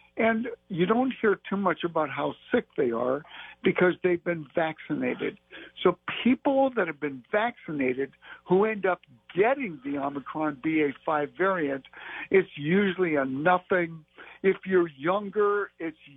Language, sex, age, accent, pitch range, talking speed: English, male, 60-79, American, 155-195 Hz, 135 wpm